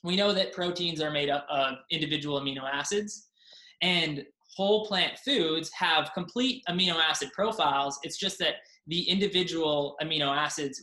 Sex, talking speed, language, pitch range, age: male, 150 wpm, English, 145-180 Hz, 20-39